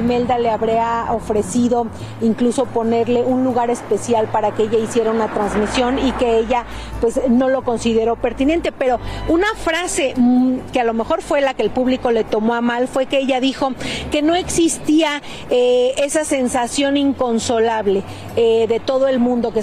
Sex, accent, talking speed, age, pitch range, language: female, Mexican, 175 wpm, 40-59, 230-275 Hz, Spanish